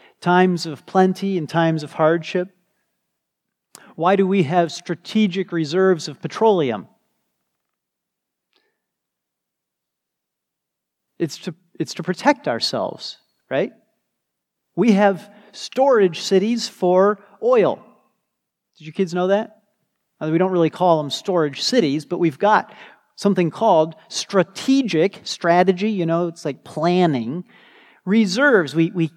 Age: 40-59